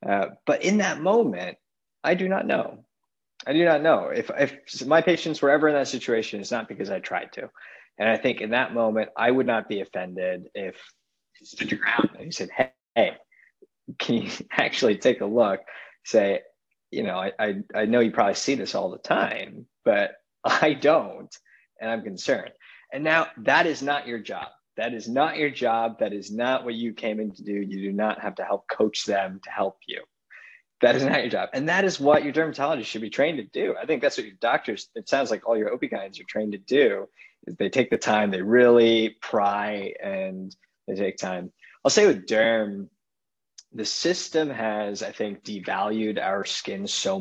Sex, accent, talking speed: male, American, 205 wpm